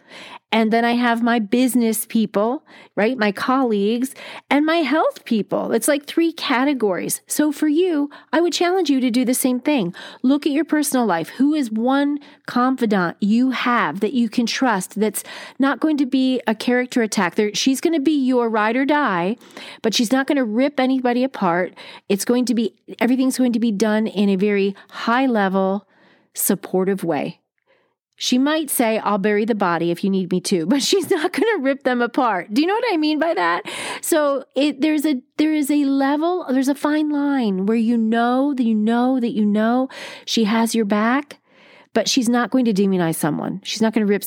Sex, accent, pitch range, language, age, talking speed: female, American, 210-285 Hz, English, 40-59, 205 wpm